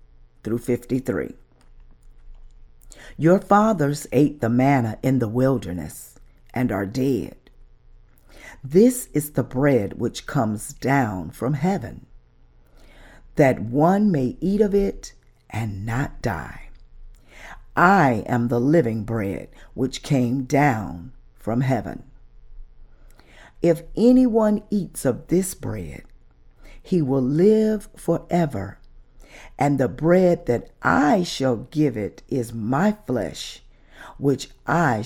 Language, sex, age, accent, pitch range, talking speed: English, female, 50-69, American, 105-160 Hz, 110 wpm